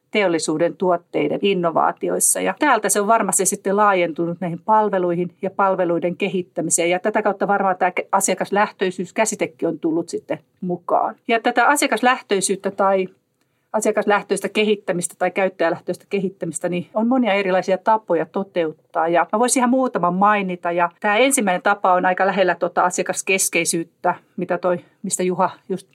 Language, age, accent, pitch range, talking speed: Finnish, 40-59, native, 180-215 Hz, 140 wpm